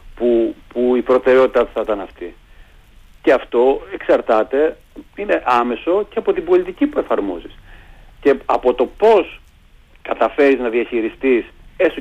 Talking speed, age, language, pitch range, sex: 130 wpm, 40-59, Greek, 115-175 Hz, male